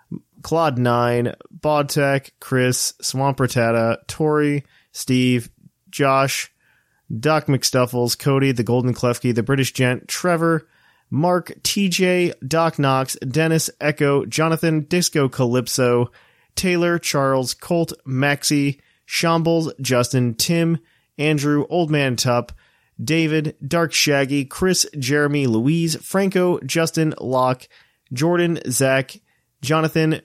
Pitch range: 135-165 Hz